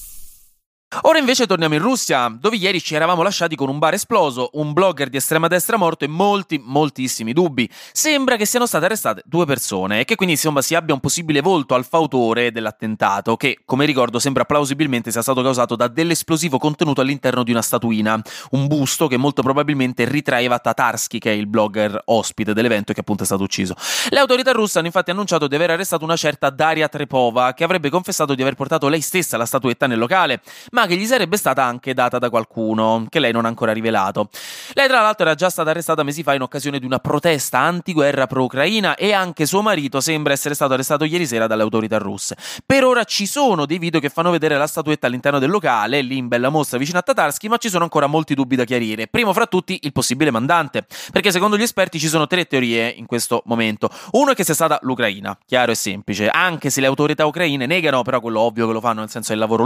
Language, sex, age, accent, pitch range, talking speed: Italian, male, 20-39, native, 120-170 Hz, 220 wpm